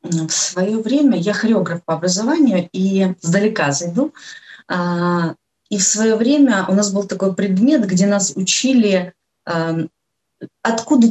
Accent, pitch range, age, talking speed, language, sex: native, 180-235 Hz, 30-49, 125 wpm, Ukrainian, female